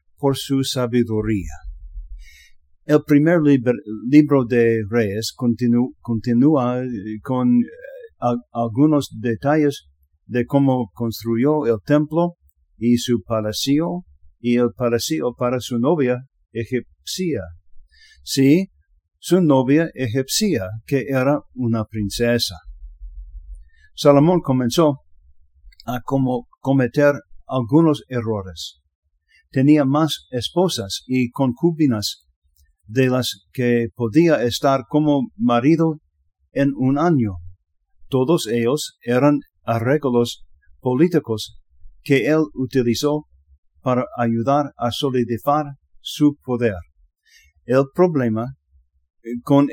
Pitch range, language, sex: 100-140 Hz, English, male